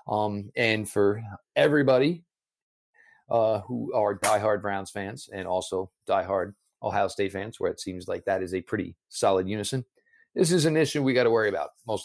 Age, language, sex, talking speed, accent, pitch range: 40-59, English, male, 180 wpm, American, 100-150 Hz